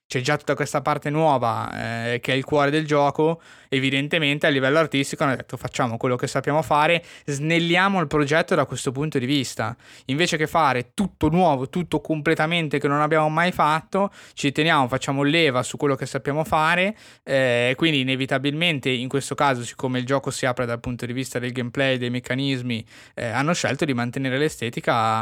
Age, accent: 20-39, native